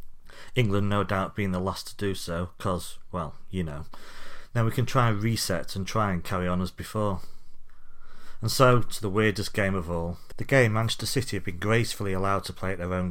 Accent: British